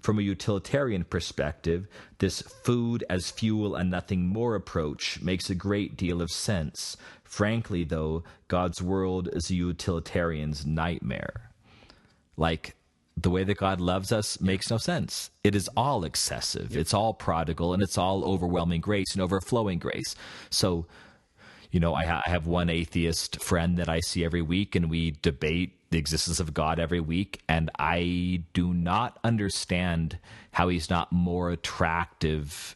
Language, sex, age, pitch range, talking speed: English, male, 40-59, 85-100 Hz, 150 wpm